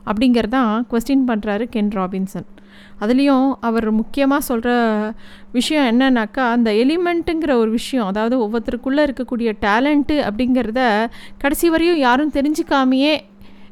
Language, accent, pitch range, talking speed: Tamil, native, 220-275 Hz, 105 wpm